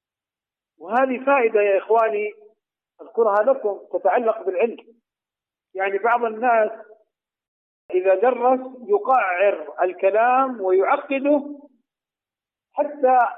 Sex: male